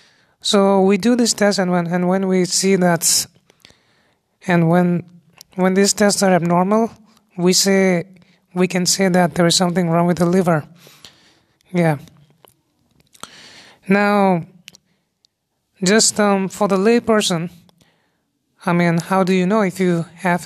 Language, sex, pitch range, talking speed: English, male, 165-190 Hz, 145 wpm